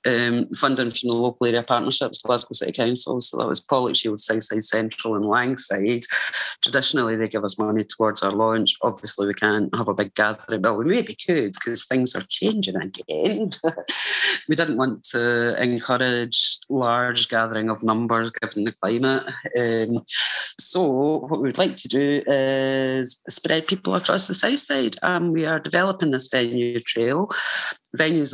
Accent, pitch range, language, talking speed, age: British, 115-135 Hz, English, 165 wpm, 30-49